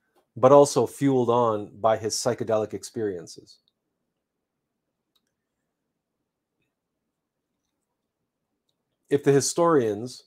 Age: 40-59